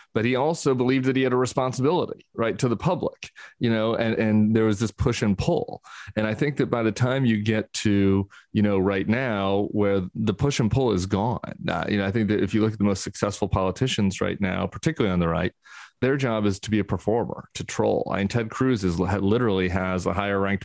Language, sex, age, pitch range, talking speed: English, male, 30-49, 95-120 Hz, 240 wpm